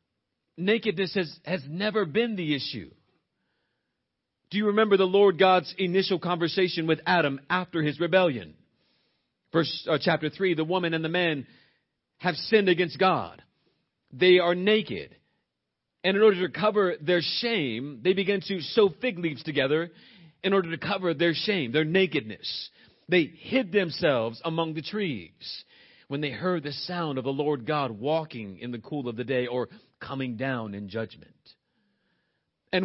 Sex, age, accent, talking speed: male, 40-59, American, 155 wpm